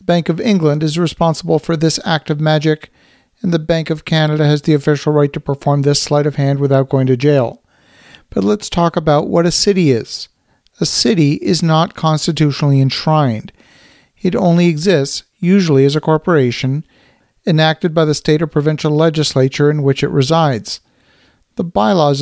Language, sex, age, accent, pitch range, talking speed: English, male, 50-69, American, 145-170 Hz, 170 wpm